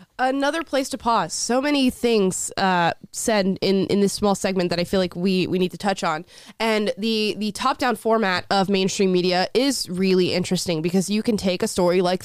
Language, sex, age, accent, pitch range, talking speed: English, female, 20-39, American, 185-225 Hz, 205 wpm